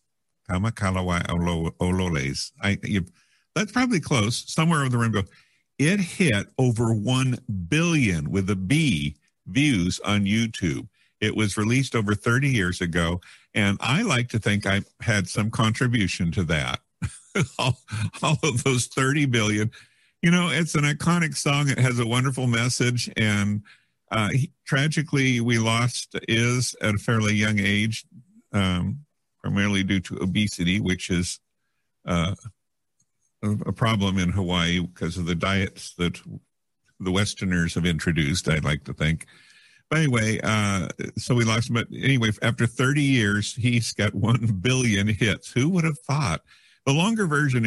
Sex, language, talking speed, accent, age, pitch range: male, English, 145 wpm, American, 50-69, 95-125 Hz